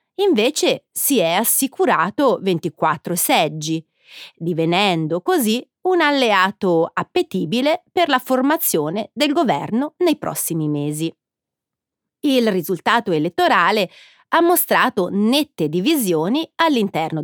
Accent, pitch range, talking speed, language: native, 170-265 Hz, 95 wpm, Italian